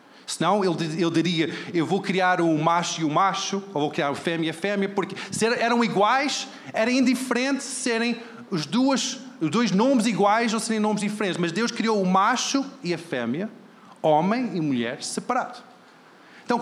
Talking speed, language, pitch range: 180 wpm, Portuguese, 160-230 Hz